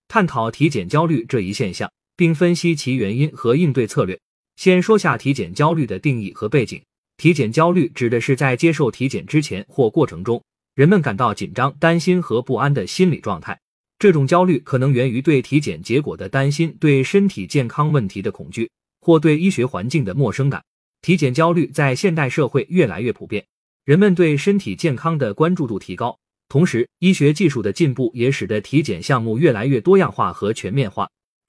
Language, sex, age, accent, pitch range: Chinese, male, 30-49, native, 130-175 Hz